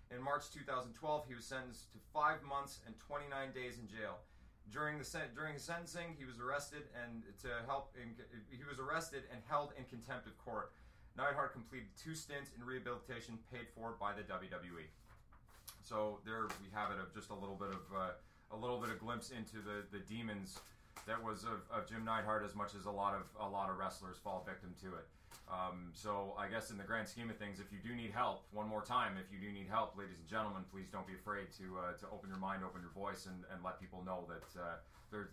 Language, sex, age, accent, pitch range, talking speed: English, male, 30-49, American, 100-125 Hz, 225 wpm